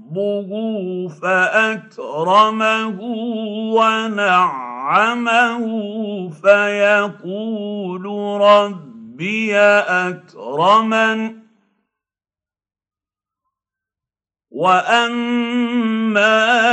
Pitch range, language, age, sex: 185-220 Hz, Arabic, 50-69, male